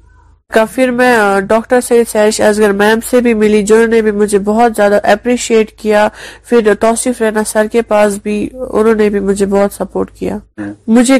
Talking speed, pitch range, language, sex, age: 170 wpm, 210-230 Hz, Urdu, female, 20-39